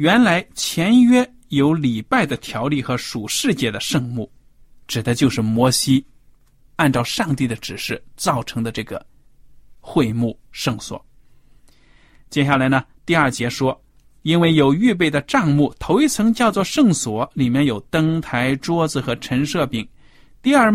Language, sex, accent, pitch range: Chinese, male, native, 125-165 Hz